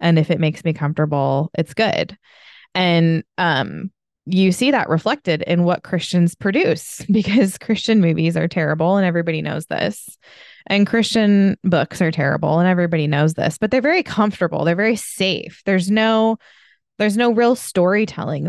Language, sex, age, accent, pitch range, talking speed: English, female, 20-39, American, 165-215 Hz, 160 wpm